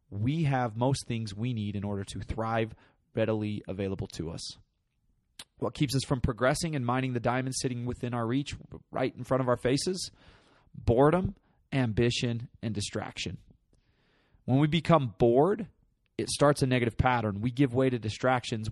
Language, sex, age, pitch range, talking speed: English, male, 30-49, 110-135 Hz, 165 wpm